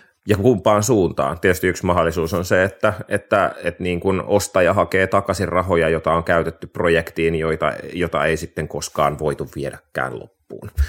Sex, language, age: male, Finnish, 30-49